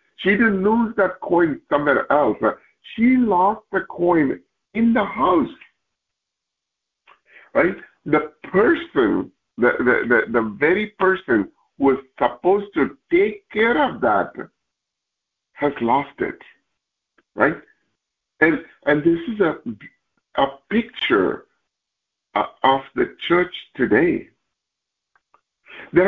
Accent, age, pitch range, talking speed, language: American, 60-79, 180-245 Hz, 110 wpm, English